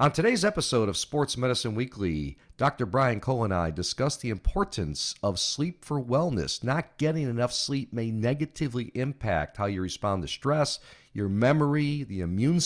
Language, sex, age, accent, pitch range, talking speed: English, male, 40-59, American, 95-135 Hz, 165 wpm